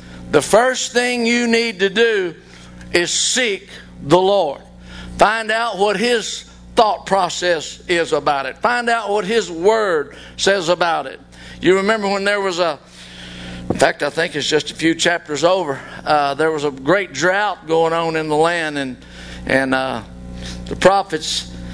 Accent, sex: American, male